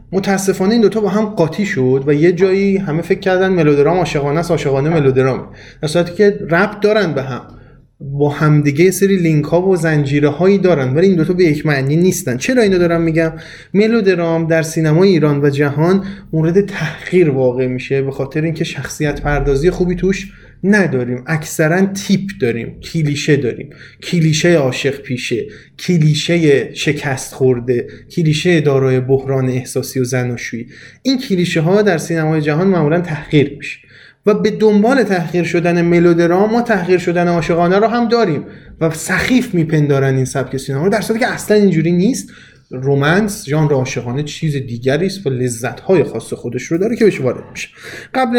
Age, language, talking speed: 30-49, Persian, 155 wpm